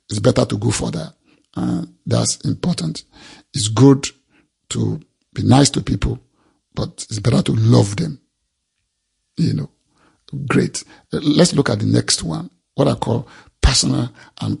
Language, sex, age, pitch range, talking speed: English, male, 50-69, 110-150 Hz, 145 wpm